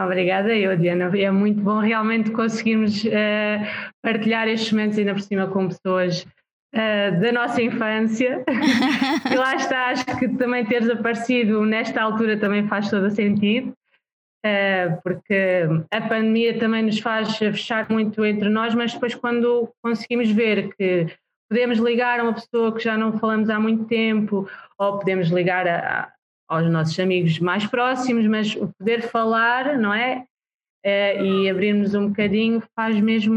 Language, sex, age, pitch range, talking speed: Portuguese, female, 20-39, 190-225 Hz, 160 wpm